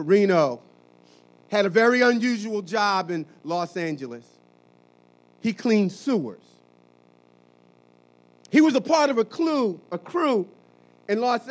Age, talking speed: 40-59, 115 wpm